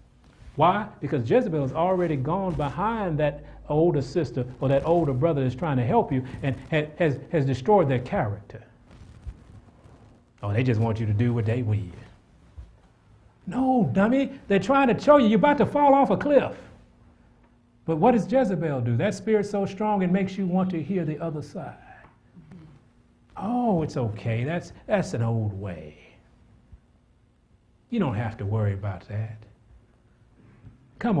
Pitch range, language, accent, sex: 115-190 Hz, English, American, male